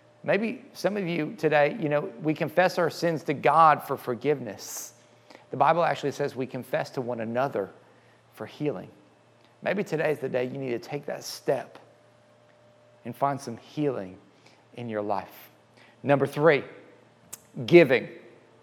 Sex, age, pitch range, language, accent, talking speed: male, 40-59, 165-210 Hz, English, American, 150 wpm